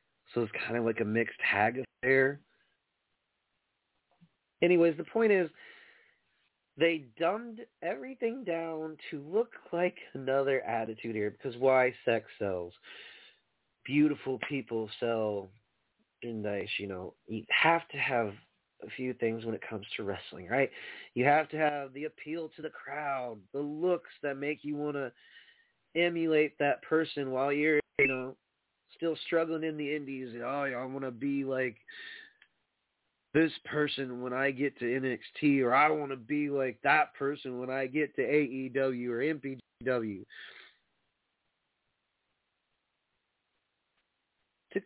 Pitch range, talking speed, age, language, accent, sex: 125-185 Hz, 135 wpm, 30-49, English, American, male